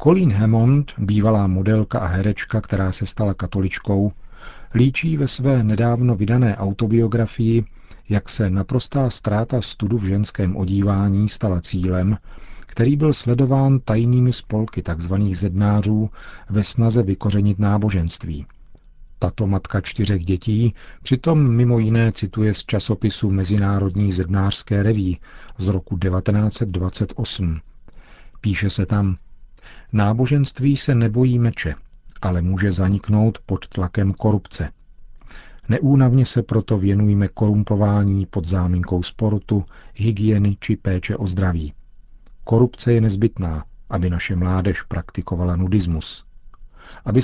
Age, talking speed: 40-59, 110 wpm